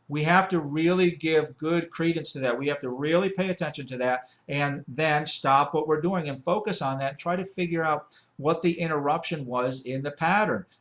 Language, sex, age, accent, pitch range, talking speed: English, male, 50-69, American, 140-185 Hz, 215 wpm